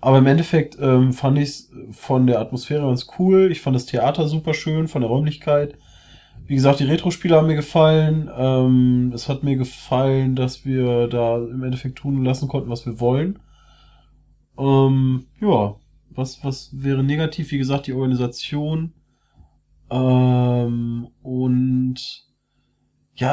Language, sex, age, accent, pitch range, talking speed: German, male, 20-39, German, 125-150 Hz, 145 wpm